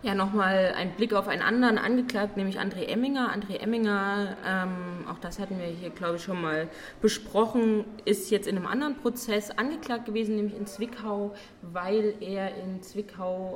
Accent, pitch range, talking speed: German, 175-220 Hz, 170 wpm